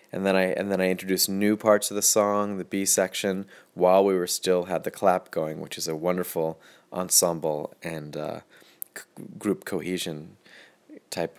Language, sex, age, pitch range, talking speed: English, male, 30-49, 85-105 Hz, 180 wpm